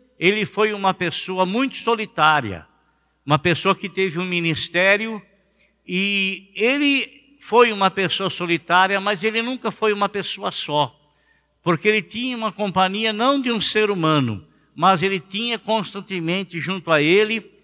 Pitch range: 175-220 Hz